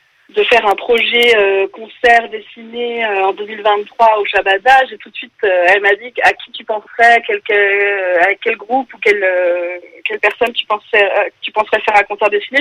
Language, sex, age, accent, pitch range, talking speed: French, female, 30-49, French, 195-245 Hz, 205 wpm